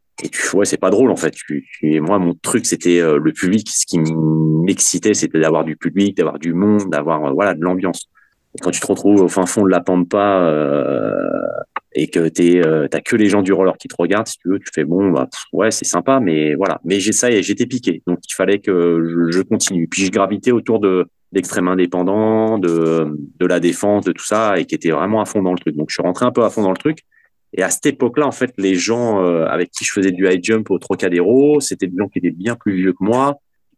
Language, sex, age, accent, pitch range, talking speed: French, male, 30-49, French, 90-115 Hz, 260 wpm